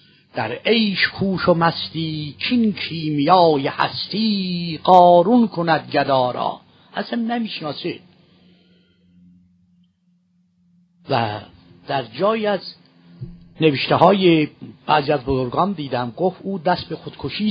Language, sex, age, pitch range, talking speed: Persian, male, 50-69, 135-180 Hz, 95 wpm